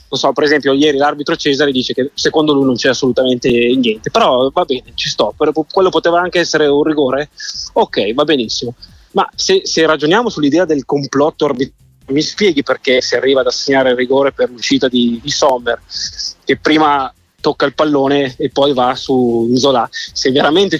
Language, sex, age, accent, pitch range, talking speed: Italian, male, 20-39, native, 130-160 Hz, 185 wpm